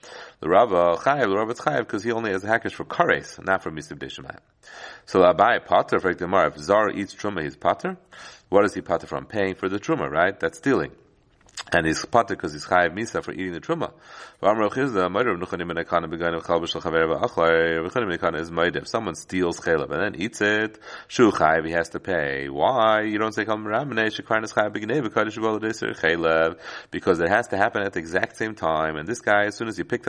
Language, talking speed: English, 170 wpm